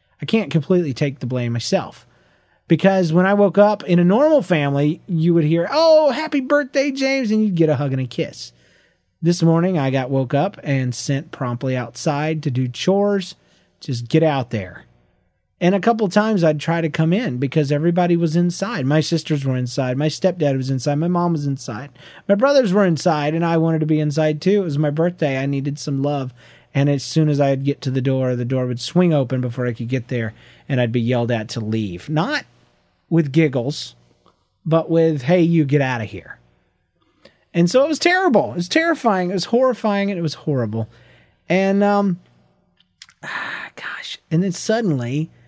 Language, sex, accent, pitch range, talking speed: English, male, American, 130-185 Hz, 200 wpm